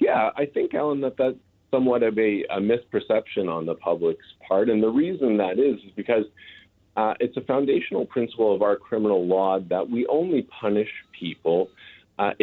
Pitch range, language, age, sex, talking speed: 95-125 Hz, English, 40-59, male, 180 wpm